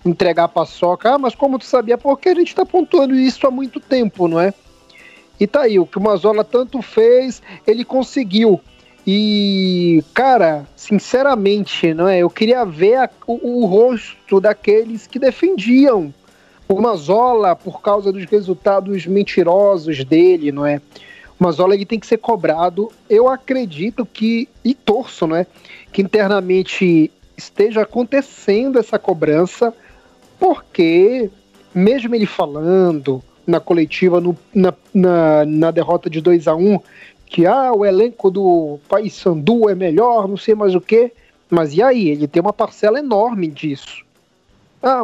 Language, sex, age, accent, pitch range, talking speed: Portuguese, male, 40-59, Brazilian, 175-240 Hz, 150 wpm